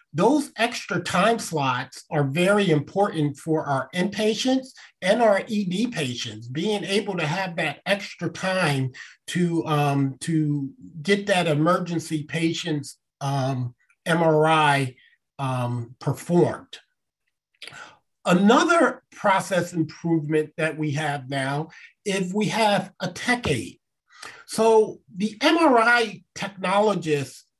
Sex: male